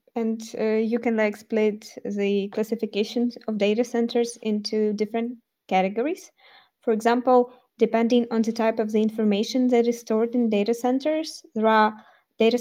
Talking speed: 150 wpm